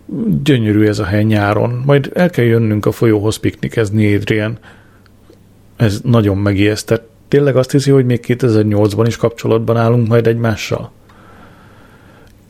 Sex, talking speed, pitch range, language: male, 150 wpm, 105-120 Hz, Hungarian